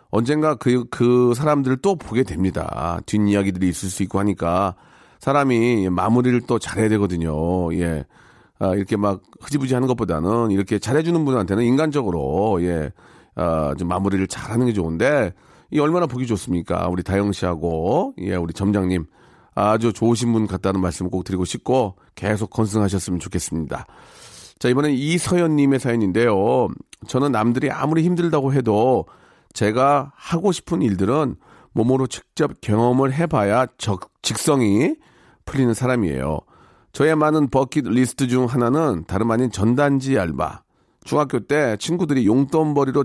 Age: 40-59